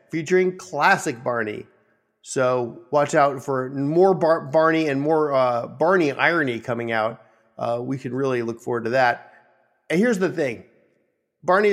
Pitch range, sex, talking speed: 120-160 Hz, male, 150 wpm